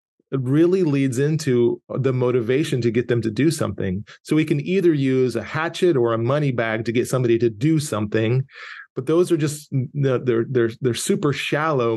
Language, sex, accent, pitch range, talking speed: English, male, American, 120-155 Hz, 185 wpm